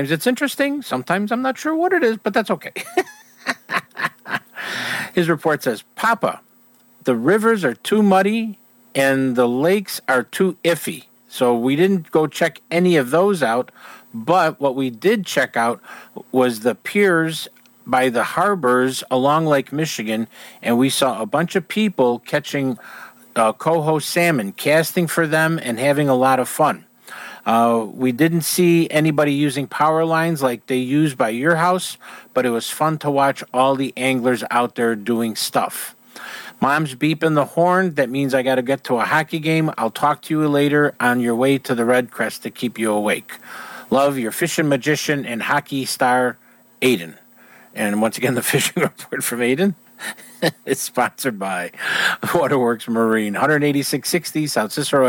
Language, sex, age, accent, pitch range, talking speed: English, male, 50-69, American, 125-175 Hz, 165 wpm